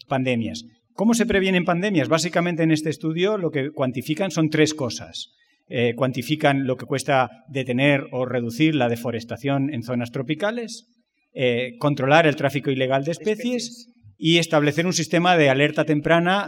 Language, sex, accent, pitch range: Spanish, male, Spanish, 130-185 Hz